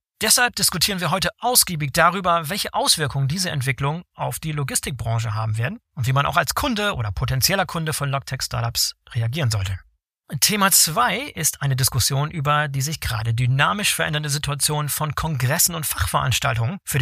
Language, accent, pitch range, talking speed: German, German, 125-170 Hz, 160 wpm